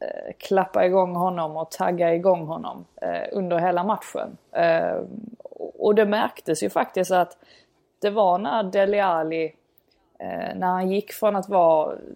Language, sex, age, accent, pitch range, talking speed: Swedish, female, 20-39, native, 170-200 Hz, 135 wpm